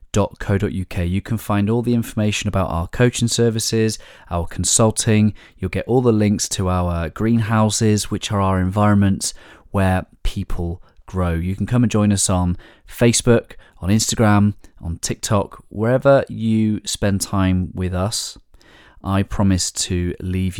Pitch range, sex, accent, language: 90-110 Hz, male, British, English